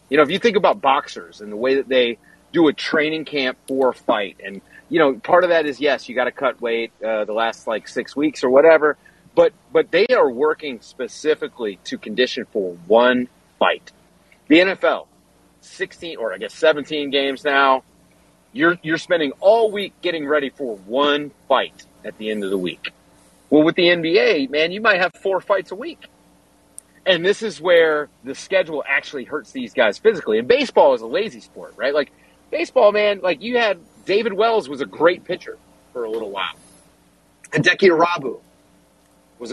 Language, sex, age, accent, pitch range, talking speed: English, male, 40-59, American, 140-230 Hz, 190 wpm